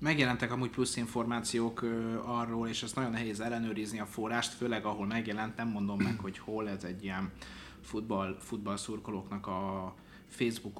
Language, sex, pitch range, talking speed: Hungarian, male, 105-125 Hz, 145 wpm